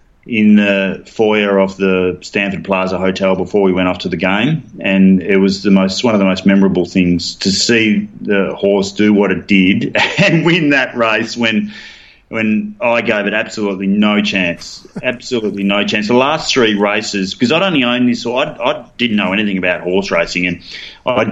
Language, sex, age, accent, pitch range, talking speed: English, male, 30-49, Australian, 95-110 Hz, 195 wpm